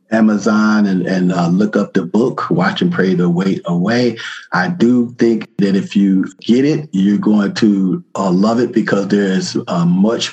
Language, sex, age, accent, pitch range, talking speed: English, male, 50-69, American, 95-115 Hz, 190 wpm